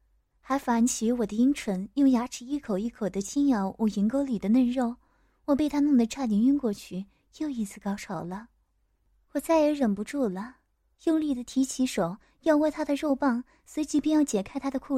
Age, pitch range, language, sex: 20-39, 210-275 Hz, Chinese, female